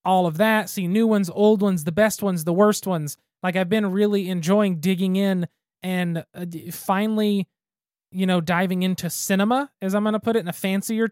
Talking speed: 205 wpm